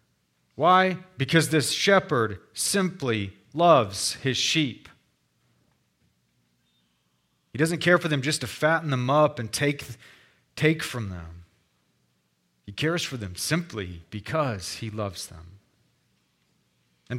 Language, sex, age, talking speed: English, male, 40-59, 115 wpm